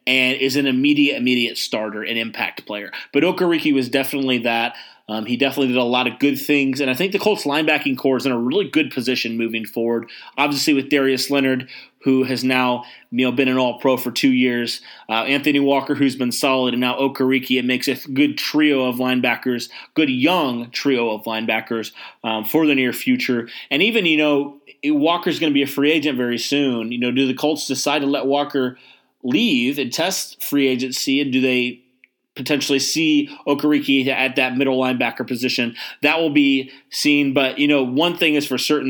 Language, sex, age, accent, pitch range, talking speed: English, male, 30-49, American, 125-145 Hz, 200 wpm